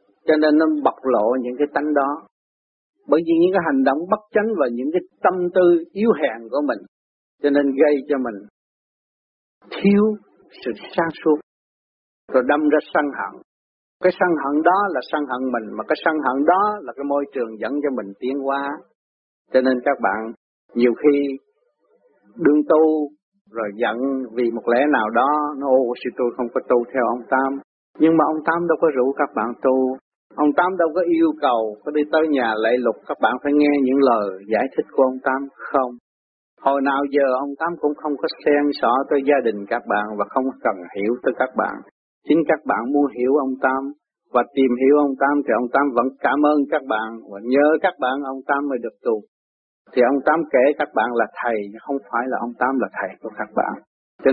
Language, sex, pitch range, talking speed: Vietnamese, male, 125-155 Hz, 210 wpm